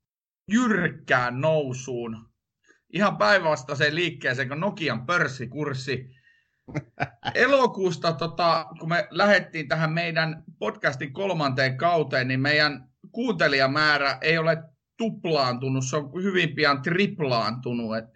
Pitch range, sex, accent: 135-180 Hz, male, native